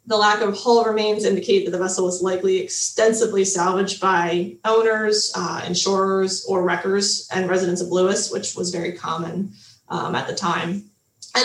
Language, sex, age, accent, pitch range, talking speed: English, female, 20-39, American, 185-220 Hz, 170 wpm